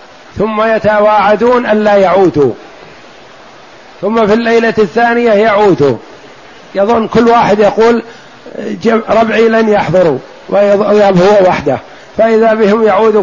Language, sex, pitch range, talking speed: Arabic, male, 175-220 Hz, 95 wpm